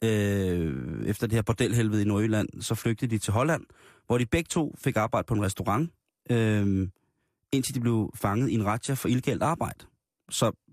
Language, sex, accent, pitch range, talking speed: Danish, male, native, 105-125 Hz, 185 wpm